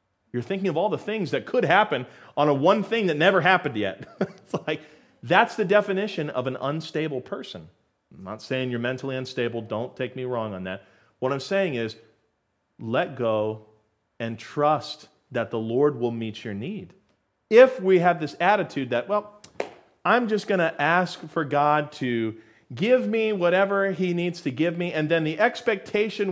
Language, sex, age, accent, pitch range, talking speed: English, male, 40-59, American, 115-175 Hz, 180 wpm